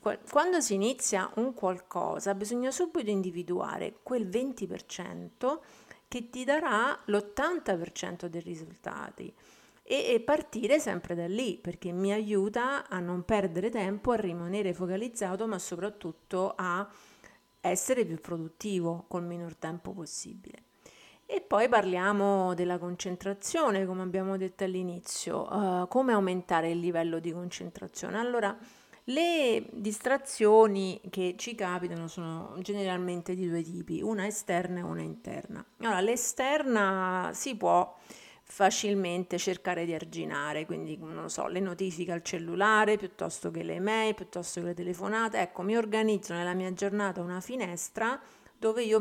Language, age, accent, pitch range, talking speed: Italian, 50-69, native, 180-220 Hz, 130 wpm